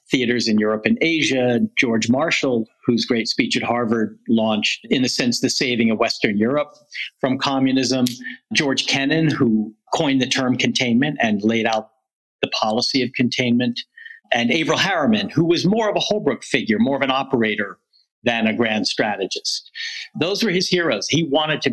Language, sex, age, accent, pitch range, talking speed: English, male, 50-69, American, 115-180 Hz, 170 wpm